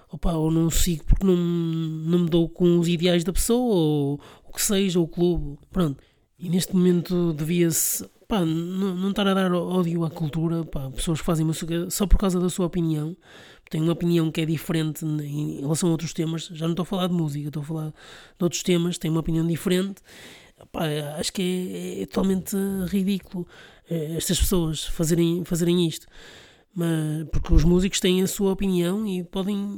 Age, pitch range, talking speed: 20-39, 160-185 Hz, 195 wpm